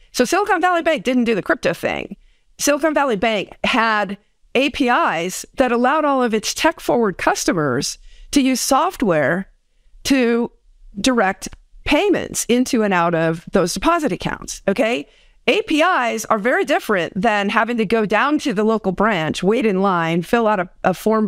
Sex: female